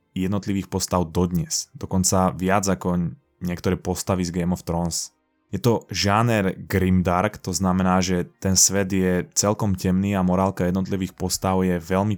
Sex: male